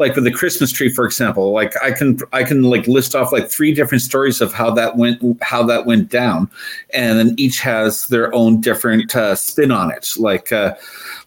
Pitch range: 105-125 Hz